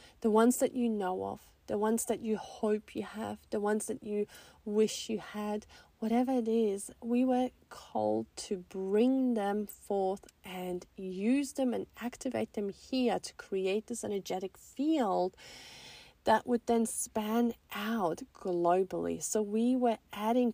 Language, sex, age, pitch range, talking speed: English, female, 30-49, 190-235 Hz, 150 wpm